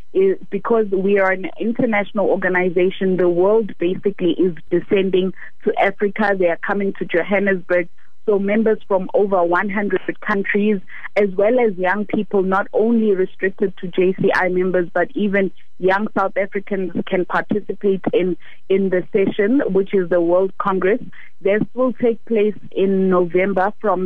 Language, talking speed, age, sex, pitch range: English, 145 wpm, 30-49, female, 185-210 Hz